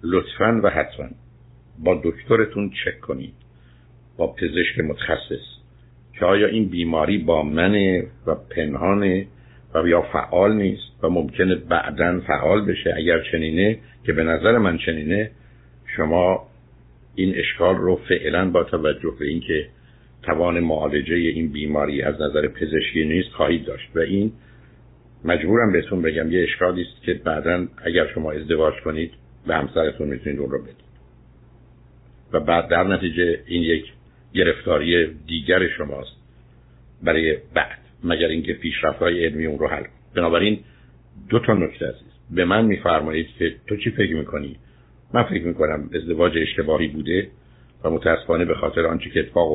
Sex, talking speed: male, 140 wpm